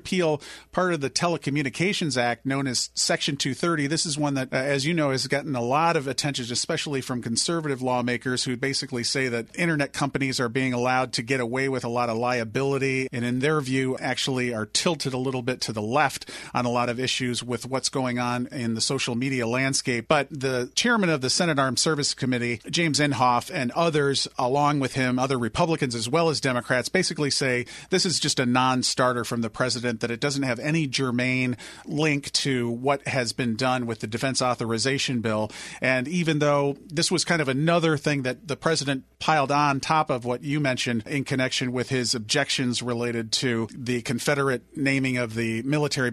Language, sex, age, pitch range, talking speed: English, male, 40-59, 125-150 Hz, 200 wpm